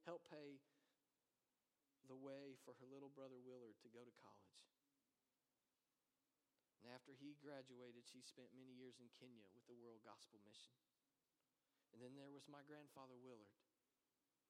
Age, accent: 40-59, American